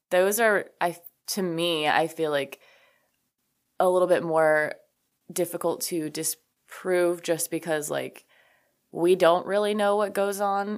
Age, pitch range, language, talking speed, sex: 20-39, 155-205 Hz, English, 140 wpm, female